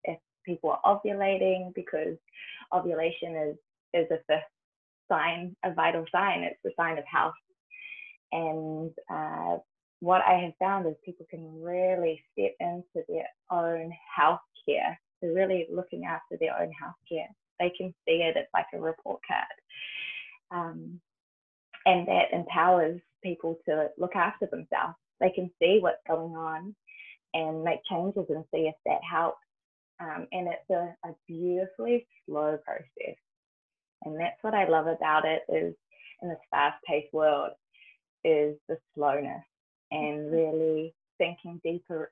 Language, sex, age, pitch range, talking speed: English, female, 20-39, 155-185 Hz, 145 wpm